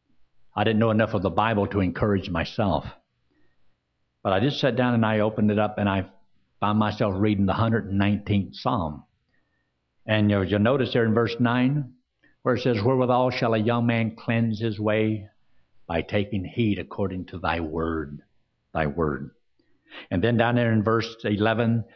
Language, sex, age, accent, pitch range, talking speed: English, male, 60-79, American, 105-130 Hz, 170 wpm